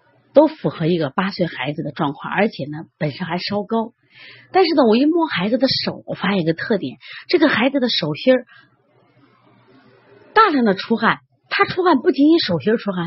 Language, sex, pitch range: Chinese, female, 165-260 Hz